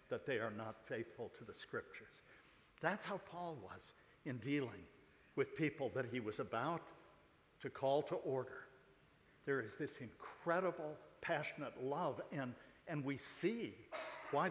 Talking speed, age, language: 145 wpm, 60-79, English